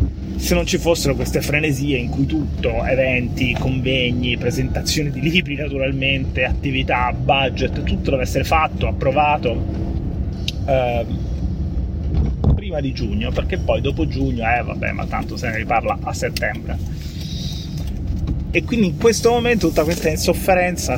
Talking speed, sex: 135 wpm, male